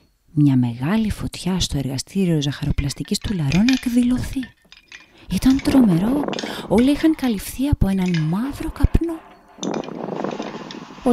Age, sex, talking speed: 30-49, female, 110 wpm